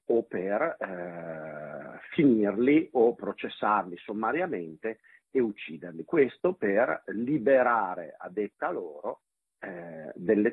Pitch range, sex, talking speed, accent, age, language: 95-120 Hz, male, 95 wpm, native, 50-69, Italian